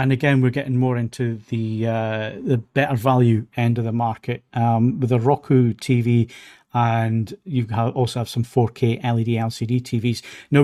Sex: male